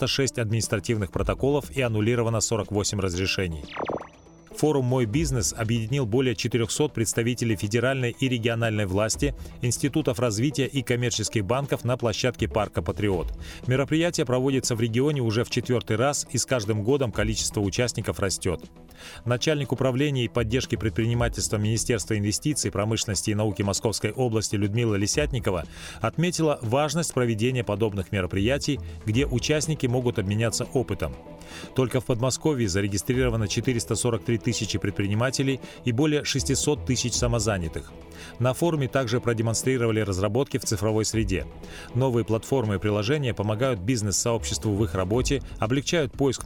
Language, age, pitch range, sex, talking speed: Russian, 30-49, 105-130 Hz, male, 125 wpm